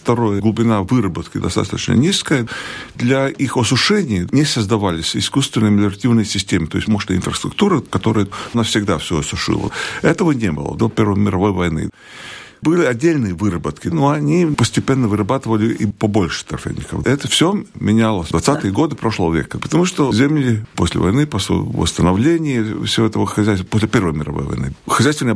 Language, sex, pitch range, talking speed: Russian, male, 95-125 Hz, 145 wpm